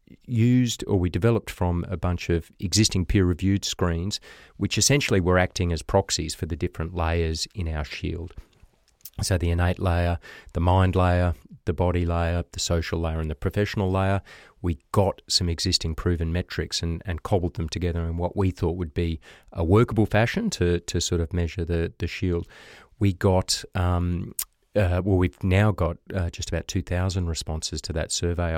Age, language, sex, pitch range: 40-59, English, male, 85-95 Hz